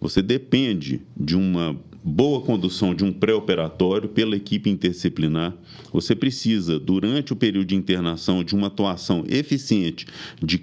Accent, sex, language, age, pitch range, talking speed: Brazilian, male, Portuguese, 40-59, 90-130 Hz, 135 wpm